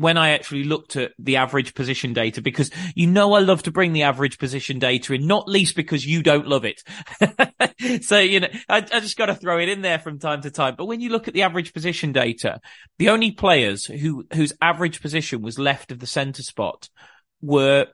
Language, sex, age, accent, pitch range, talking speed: English, male, 30-49, British, 125-160 Hz, 220 wpm